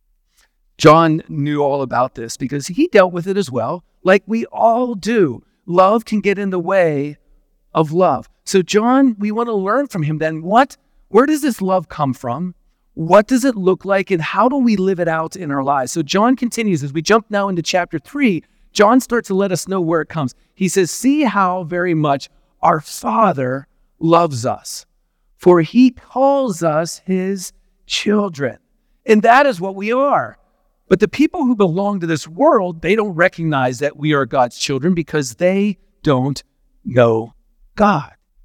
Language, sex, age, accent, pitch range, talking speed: English, male, 40-59, American, 155-220 Hz, 185 wpm